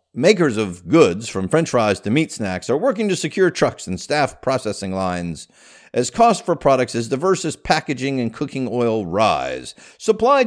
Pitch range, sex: 110-180 Hz, male